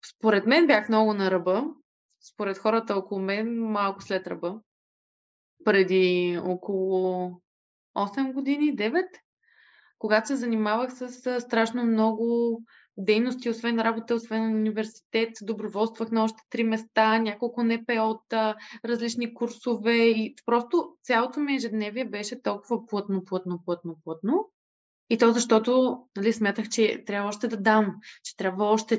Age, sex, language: 20-39, female, Bulgarian